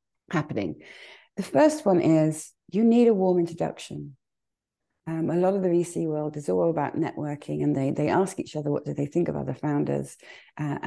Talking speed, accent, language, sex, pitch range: 195 wpm, British, English, female, 140-180 Hz